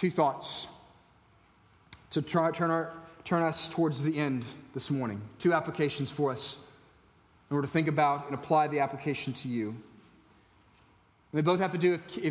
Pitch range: 140-190 Hz